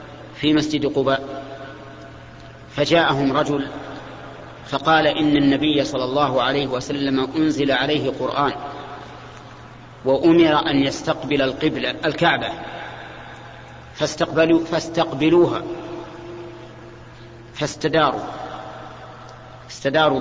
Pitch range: 135-160 Hz